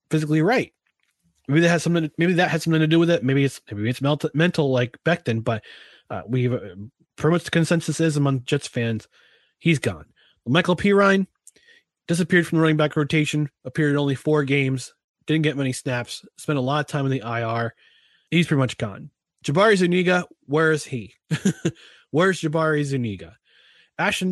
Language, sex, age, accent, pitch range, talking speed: English, male, 20-39, American, 125-165 Hz, 185 wpm